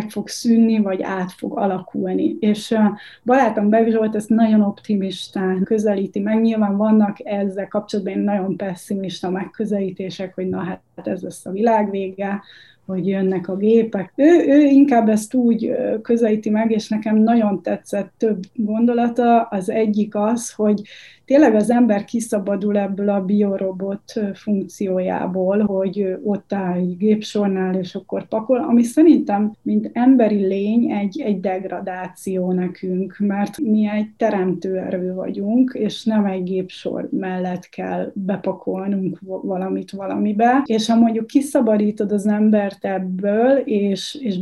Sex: female